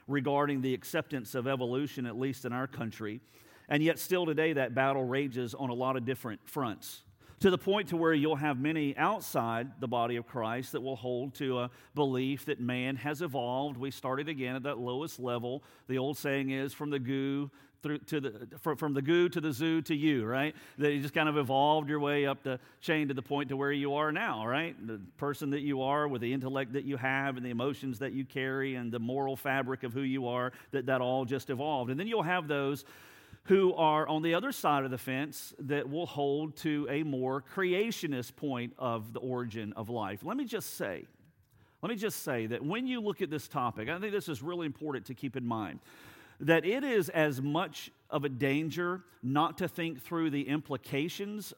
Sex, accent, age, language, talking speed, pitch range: male, American, 50-69, English, 220 wpm, 130-160 Hz